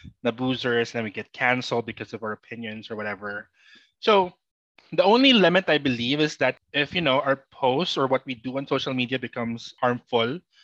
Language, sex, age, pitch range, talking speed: Filipino, male, 20-39, 120-160 Hz, 195 wpm